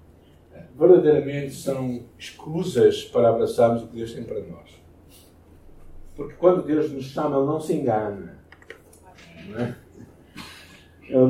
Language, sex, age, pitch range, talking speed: Portuguese, male, 60-79, 95-145 Hz, 110 wpm